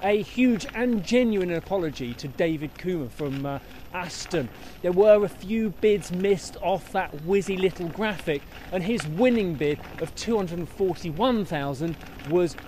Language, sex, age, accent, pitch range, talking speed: English, male, 20-39, British, 150-205 Hz, 135 wpm